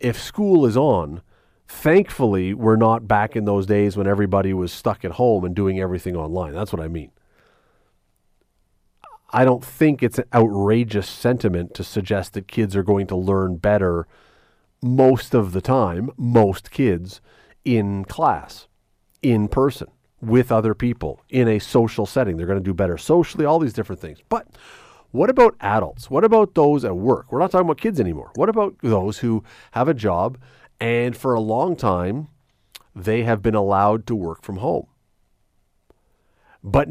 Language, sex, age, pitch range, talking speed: English, male, 40-59, 100-145 Hz, 170 wpm